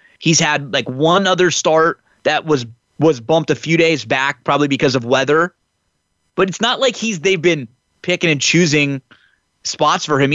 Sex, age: male, 20-39